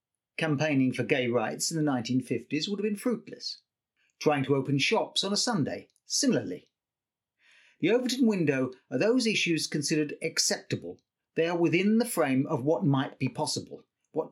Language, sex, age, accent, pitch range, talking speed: English, male, 50-69, British, 130-190 Hz, 160 wpm